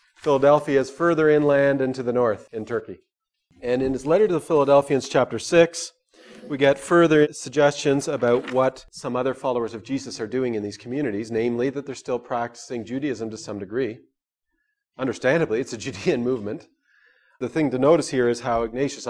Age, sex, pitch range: 40-59, male, 120-160 Hz